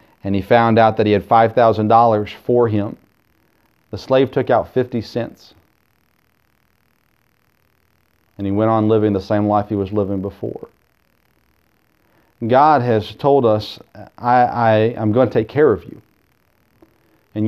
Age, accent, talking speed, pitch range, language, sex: 40-59, American, 145 wpm, 115-140 Hz, English, male